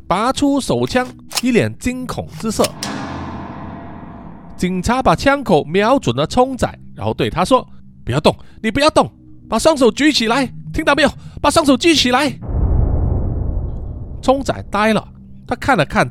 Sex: male